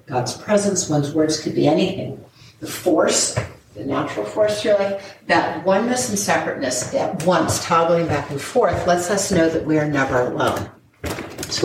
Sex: female